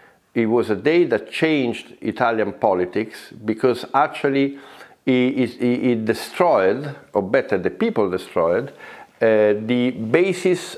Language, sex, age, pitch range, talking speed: Hungarian, male, 50-69, 105-130 Hz, 120 wpm